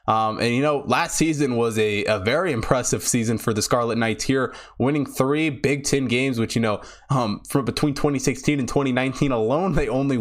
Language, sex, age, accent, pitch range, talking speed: English, male, 20-39, American, 110-140 Hz, 200 wpm